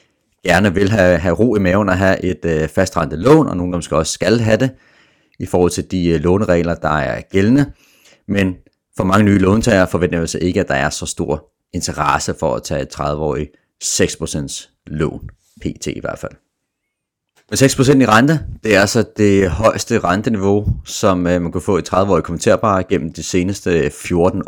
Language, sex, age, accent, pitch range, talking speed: Danish, male, 30-49, native, 85-105 Hz, 190 wpm